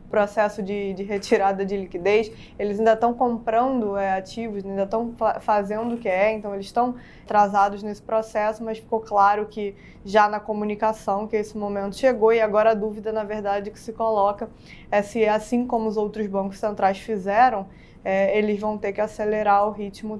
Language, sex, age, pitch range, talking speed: Portuguese, female, 20-39, 200-225 Hz, 185 wpm